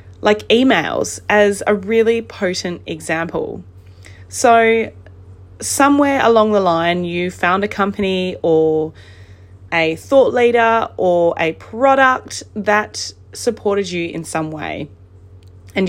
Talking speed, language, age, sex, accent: 115 wpm, English, 20-39, female, Australian